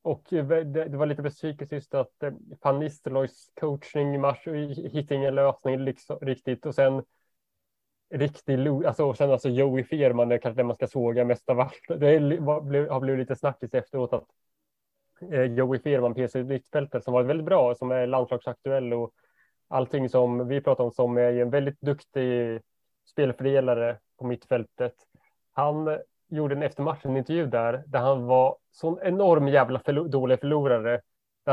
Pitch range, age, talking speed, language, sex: 125-145 Hz, 20-39, 155 wpm, Swedish, male